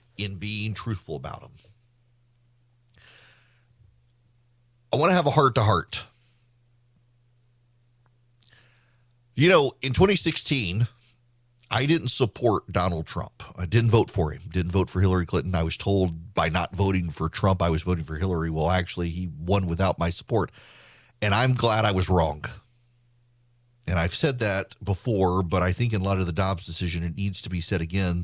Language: English